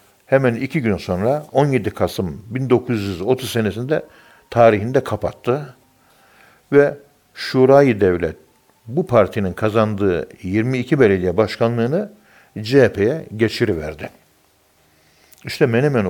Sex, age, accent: male, 60-79, native